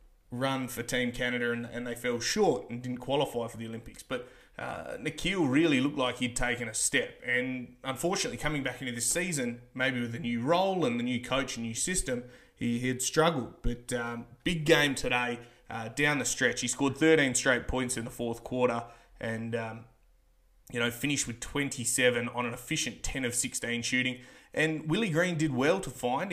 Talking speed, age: 195 wpm, 20-39